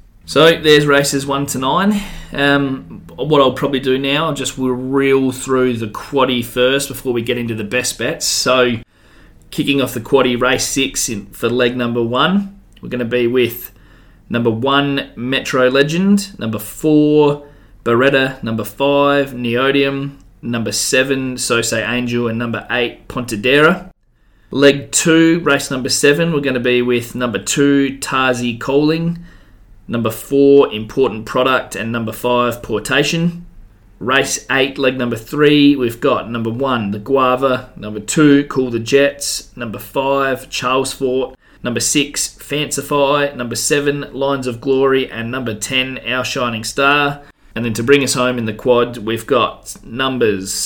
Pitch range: 115-140 Hz